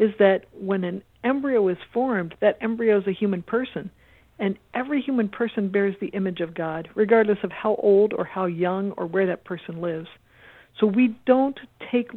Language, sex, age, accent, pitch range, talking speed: English, female, 50-69, American, 180-225 Hz, 185 wpm